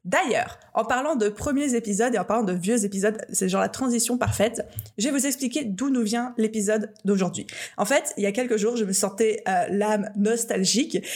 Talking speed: 210 wpm